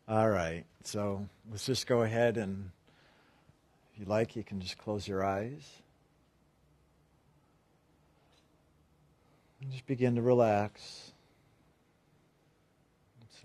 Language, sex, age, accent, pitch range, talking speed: English, male, 50-69, American, 100-130 Hz, 105 wpm